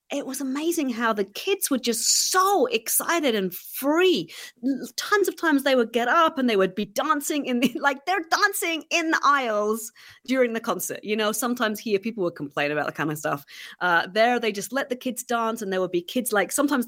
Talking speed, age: 220 wpm, 30-49